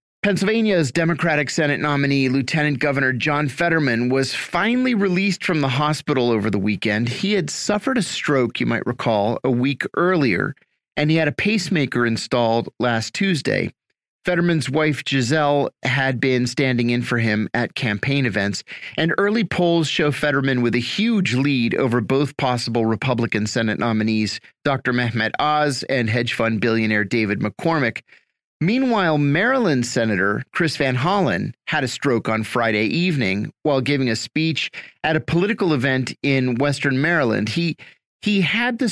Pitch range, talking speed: 120-180 Hz, 155 wpm